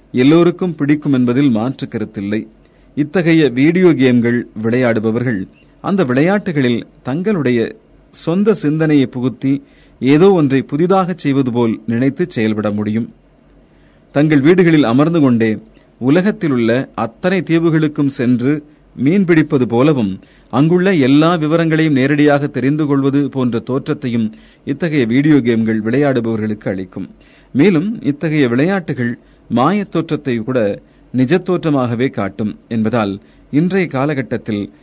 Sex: male